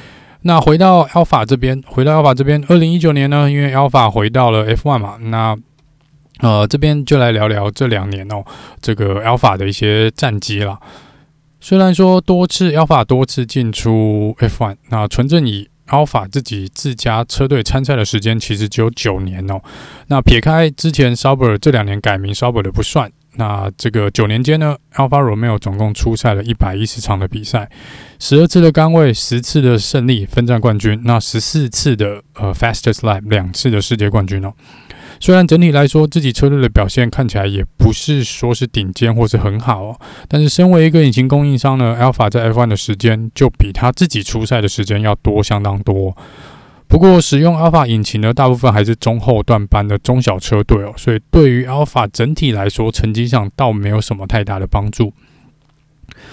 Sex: male